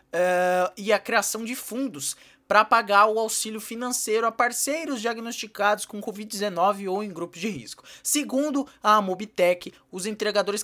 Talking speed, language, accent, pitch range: 145 wpm, Portuguese, Brazilian, 170-235 Hz